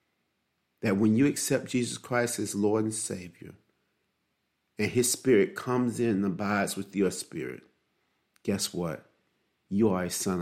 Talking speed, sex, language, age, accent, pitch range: 150 wpm, male, English, 50-69, American, 95-130 Hz